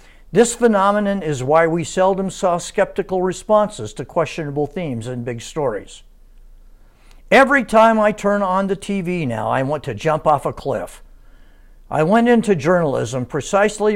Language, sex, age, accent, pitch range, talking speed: English, male, 60-79, American, 130-195 Hz, 150 wpm